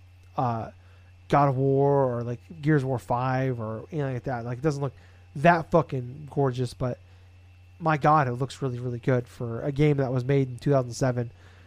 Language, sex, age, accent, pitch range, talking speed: English, male, 30-49, American, 110-150 Hz, 190 wpm